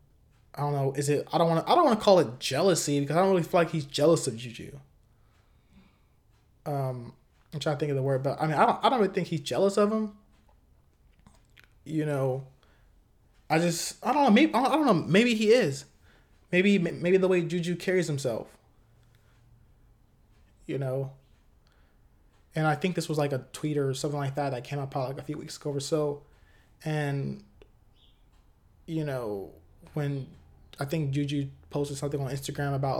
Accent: American